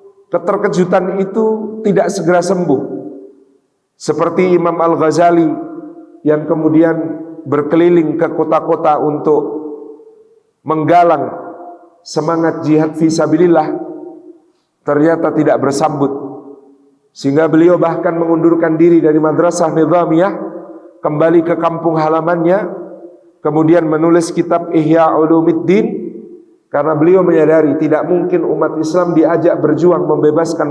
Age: 50-69